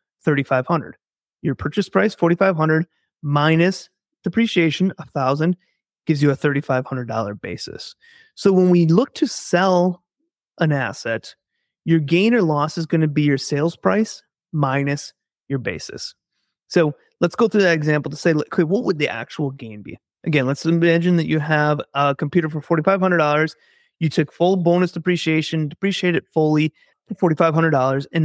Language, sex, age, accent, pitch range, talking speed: English, male, 30-49, American, 145-180 Hz, 145 wpm